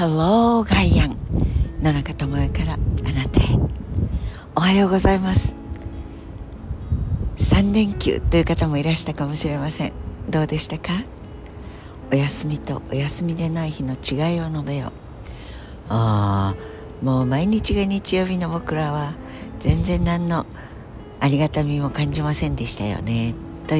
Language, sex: Japanese, female